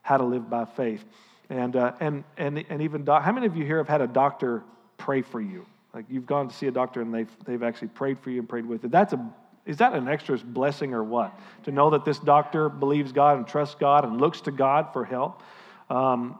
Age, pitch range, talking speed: 50-69, 130-165 Hz, 245 wpm